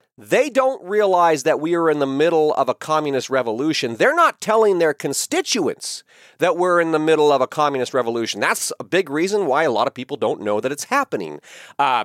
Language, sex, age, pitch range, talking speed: English, male, 40-59, 145-215 Hz, 210 wpm